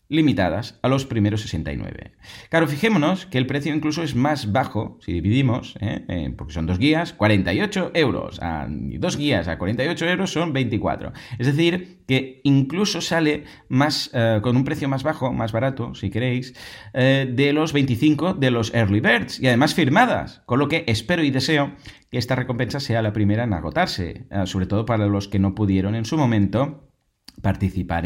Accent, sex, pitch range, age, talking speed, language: Spanish, male, 105-140 Hz, 30-49, 180 wpm, Spanish